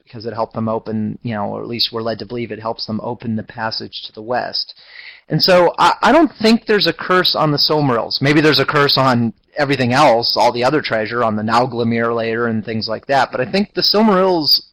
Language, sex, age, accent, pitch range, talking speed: English, male, 30-49, American, 115-145 Hz, 240 wpm